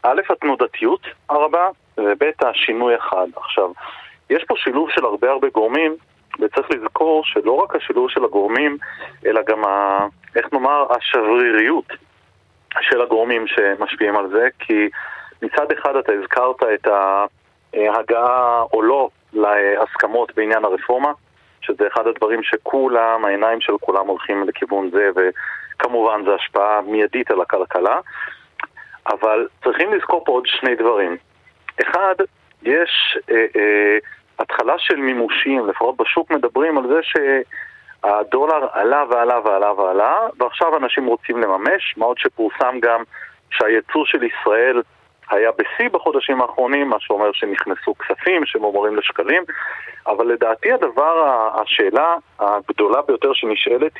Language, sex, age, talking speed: Hebrew, male, 40-59, 125 wpm